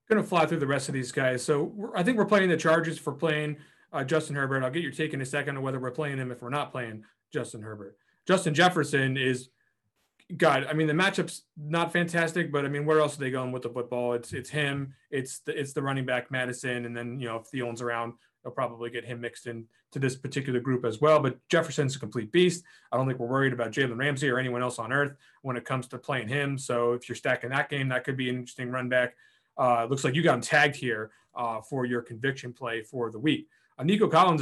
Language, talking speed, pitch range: English, 255 wpm, 125-150 Hz